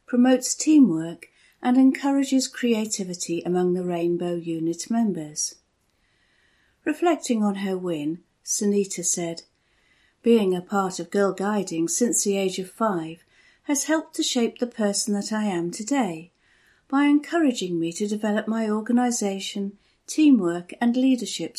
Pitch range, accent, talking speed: 170-245 Hz, British, 130 wpm